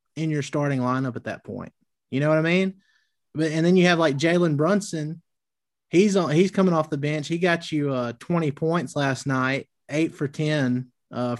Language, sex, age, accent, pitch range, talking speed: English, male, 30-49, American, 130-170 Hz, 205 wpm